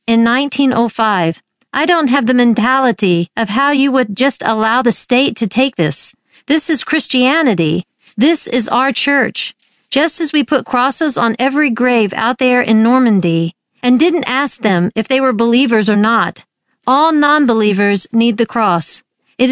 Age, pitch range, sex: 50-69, 215-260 Hz, female